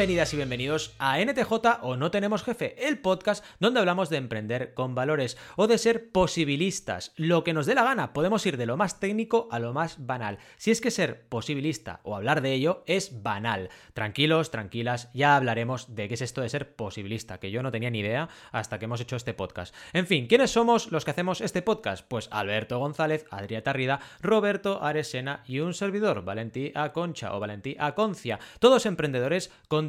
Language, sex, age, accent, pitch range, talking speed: Spanish, male, 30-49, Spanish, 120-180 Hz, 195 wpm